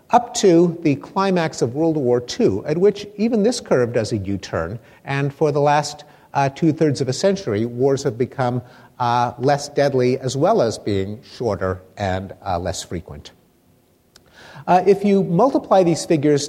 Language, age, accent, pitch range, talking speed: English, 50-69, American, 115-165 Hz, 165 wpm